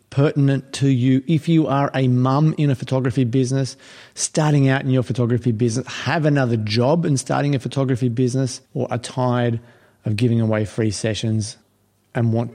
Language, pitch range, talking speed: English, 115-140 Hz, 170 wpm